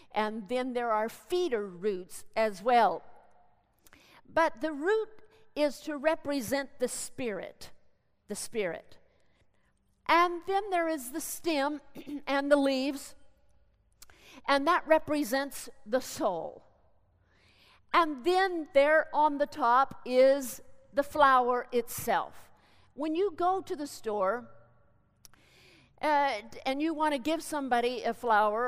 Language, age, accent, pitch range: English, 50-69, American, 225-295 Hz